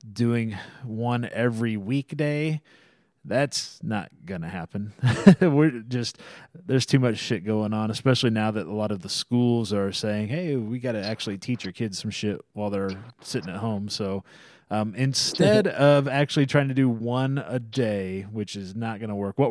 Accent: American